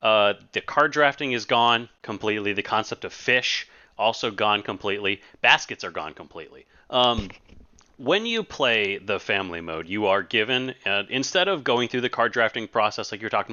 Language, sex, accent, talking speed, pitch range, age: English, male, American, 175 wpm, 100-130 Hz, 30-49